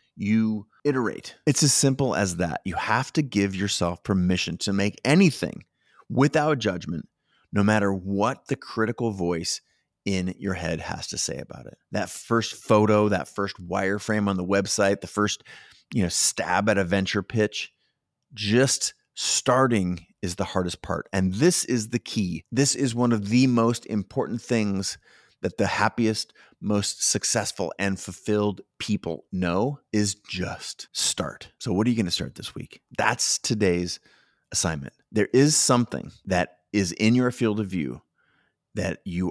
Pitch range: 95-115 Hz